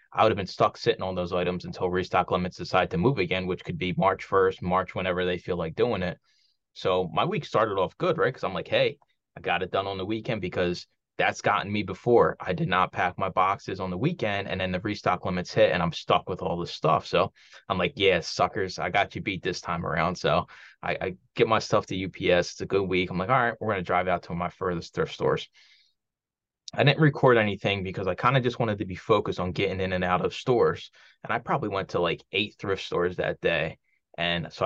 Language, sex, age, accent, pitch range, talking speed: English, male, 20-39, American, 90-110 Hz, 250 wpm